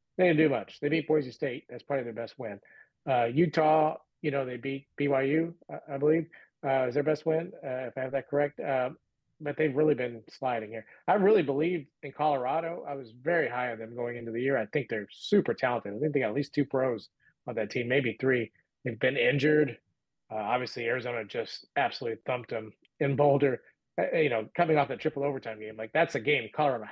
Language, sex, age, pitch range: English, male, 30-49, 120-150 Hz